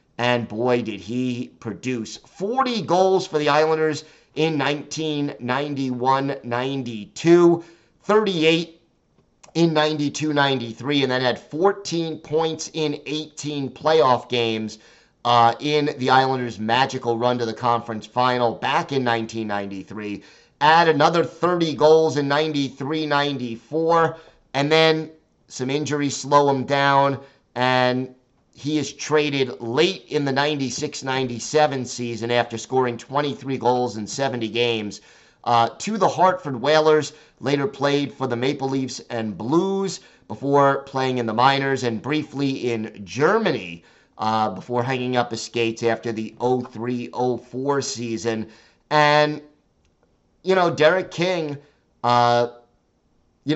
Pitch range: 120-155 Hz